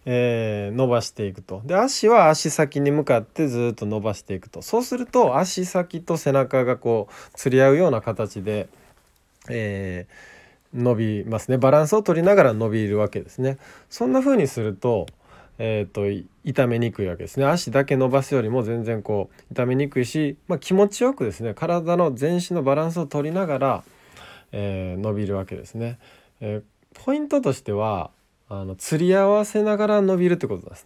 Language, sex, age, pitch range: Japanese, male, 20-39, 105-170 Hz